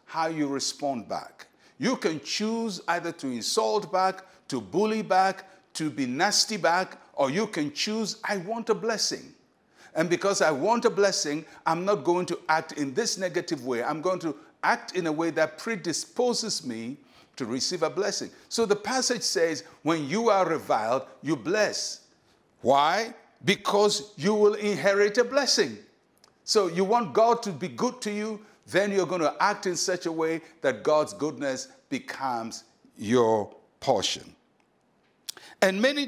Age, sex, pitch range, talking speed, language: 60-79, male, 160-210 Hz, 165 wpm, English